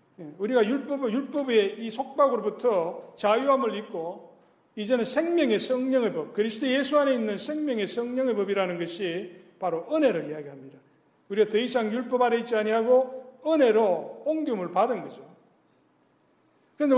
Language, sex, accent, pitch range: Korean, male, native, 195-260 Hz